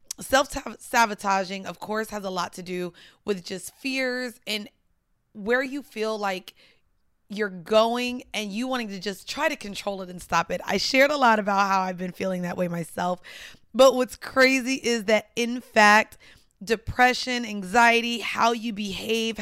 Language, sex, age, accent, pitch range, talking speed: English, female, 20-39, American, 190-235 Hz, 165 wpm